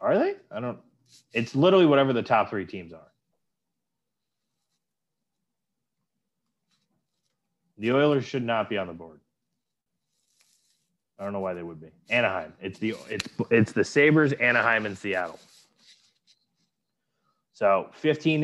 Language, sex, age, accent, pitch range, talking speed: English, male, 20-39, American, 95-125 Hz, 125 wpm